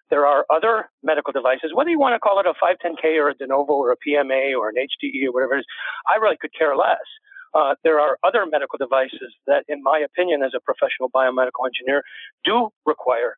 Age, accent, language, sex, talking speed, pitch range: 50-69, American, English, male, 220 wpm, 135-205 Hz